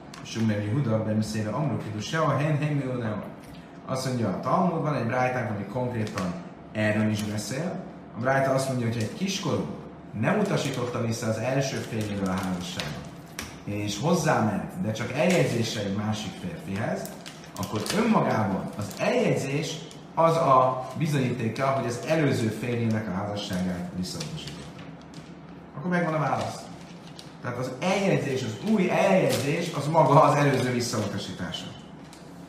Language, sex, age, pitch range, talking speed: Hungarian, male, 30-49, 105-150 Hz, 135 wpm